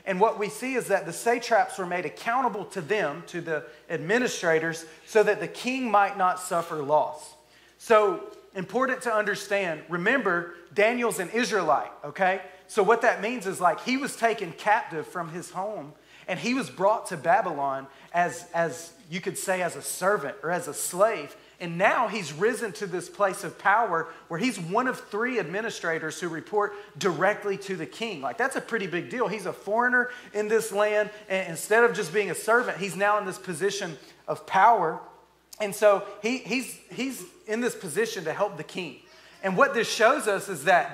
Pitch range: 180-225 Hz